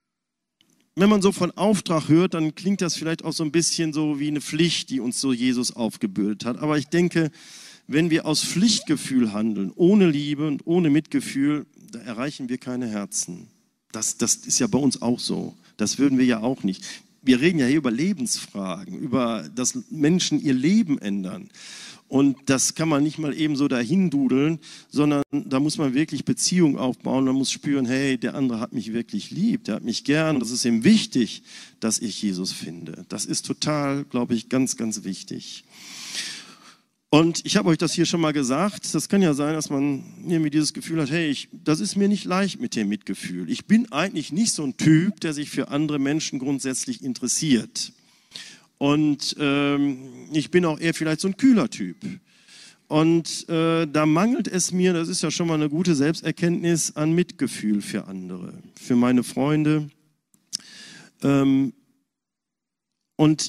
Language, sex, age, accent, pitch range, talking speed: German, male, 40-59, German, 135-190 Hz, 180 wpm